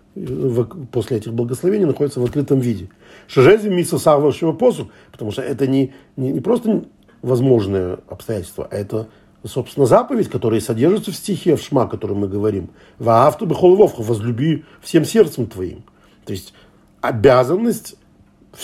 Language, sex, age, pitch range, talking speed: Russian, male, 50-69, 110-170 Hz, 135 wpm